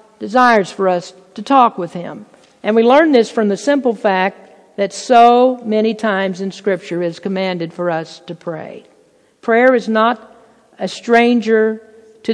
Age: 50-69